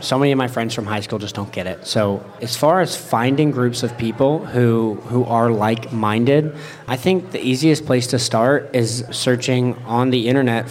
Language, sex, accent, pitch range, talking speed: English, male, American, 115-140 Hz, 200 wpm